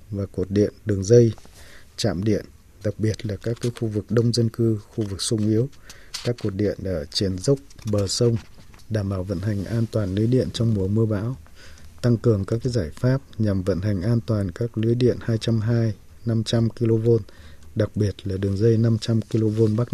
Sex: male